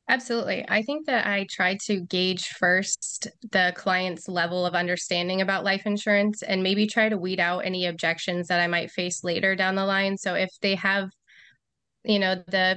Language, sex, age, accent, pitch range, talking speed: English, female, 20-39, American, 180-195 Hz, 190 wpm